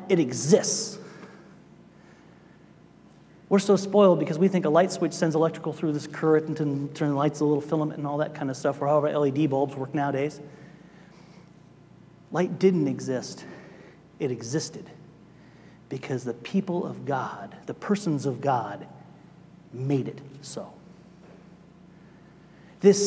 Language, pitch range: English, 170-230 Hz